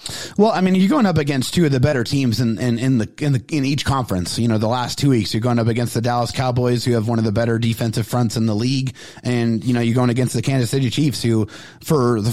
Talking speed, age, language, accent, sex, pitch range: 280 wpm, 30-49, English, American, male, 115-140 Hz